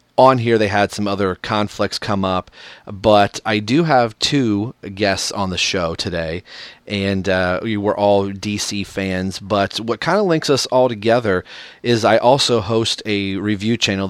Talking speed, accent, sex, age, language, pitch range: 180 wpm, American, male, 30-49, English, 95-115 Hz